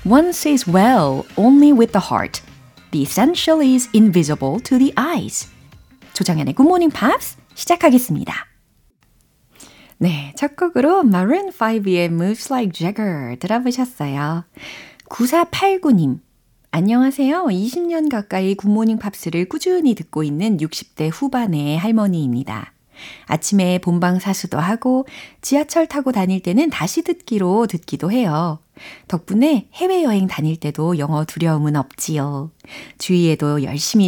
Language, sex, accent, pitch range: Korean, female, native, 155-250 Hz